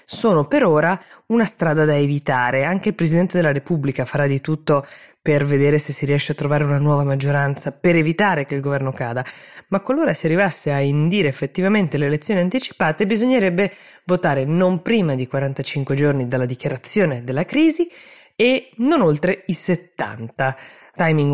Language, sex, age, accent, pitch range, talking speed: Italian, female, 20-39, native, 145-205 Hz, 165 wpm